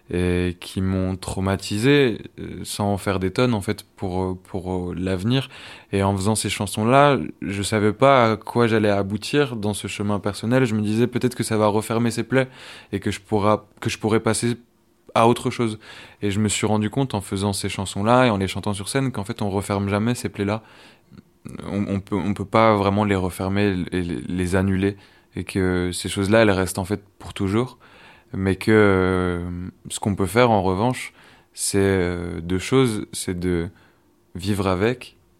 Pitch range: 90-110 Hz